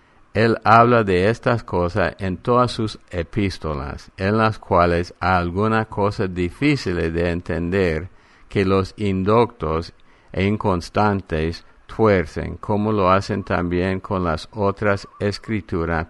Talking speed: 120 wpm